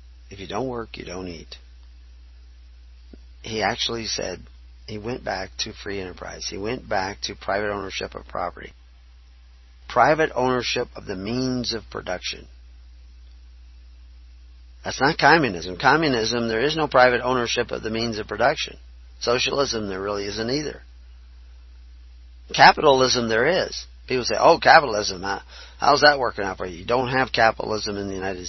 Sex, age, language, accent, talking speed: male, 40-59, English, American, 145 wpm